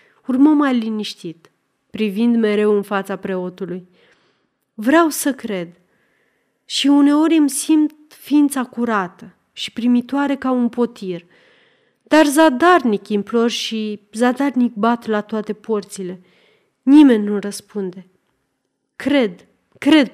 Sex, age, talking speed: female, 30-49, 105 wpm